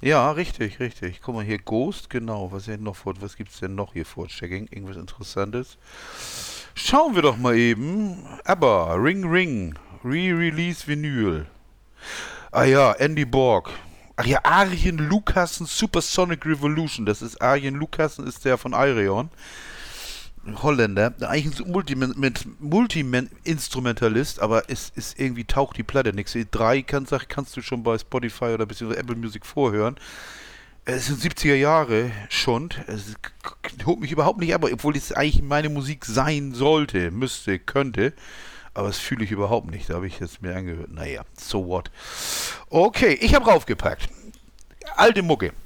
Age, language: 40-59, German